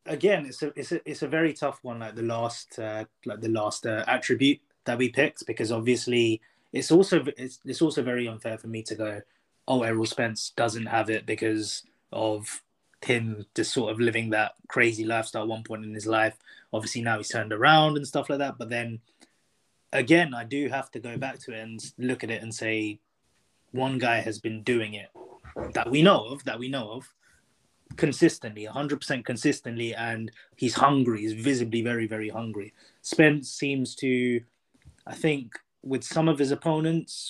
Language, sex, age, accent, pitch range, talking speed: English, male, 20-39, British, 115-140 Hz, 190 wpm